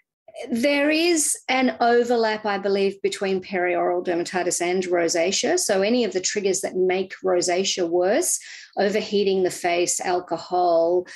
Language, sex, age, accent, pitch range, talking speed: English, female, 40-59, Australian, 170-205 Hz, 130 wpm